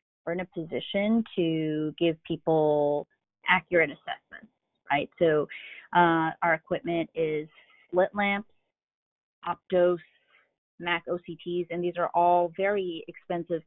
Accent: American